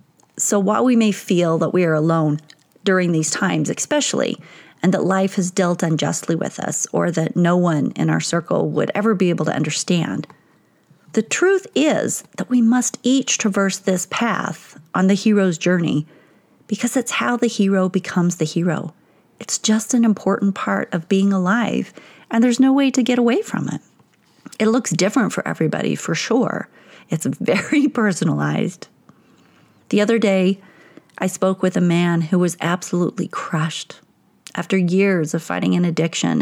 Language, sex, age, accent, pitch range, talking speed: English, female, 40-59, American, 170-220 Hz, 165 wpm